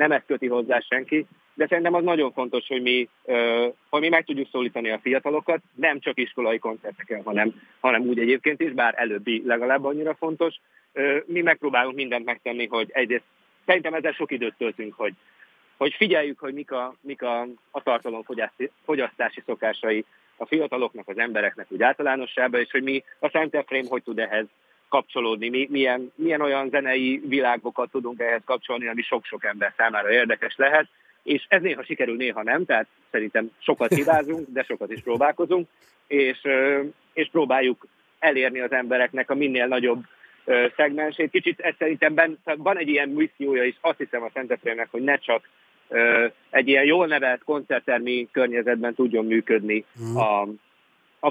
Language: Hungarian